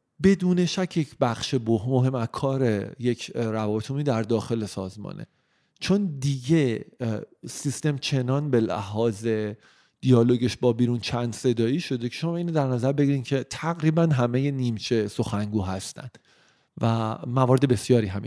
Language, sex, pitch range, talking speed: Persian, male, 115-140 Hz, 130 wpm